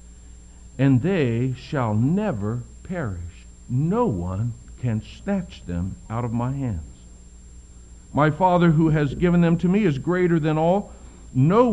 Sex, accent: male, American